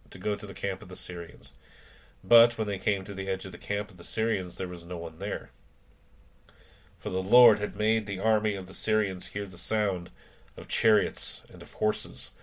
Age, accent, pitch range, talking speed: 30-49, American, 90-110 Hz, 210 wpm